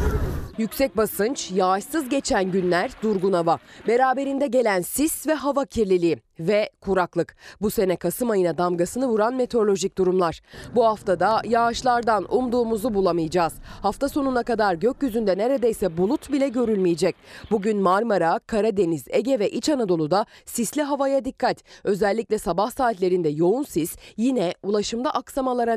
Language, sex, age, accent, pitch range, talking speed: Turkish, female, 30-49, native, 185-265 Hz, 125 wpm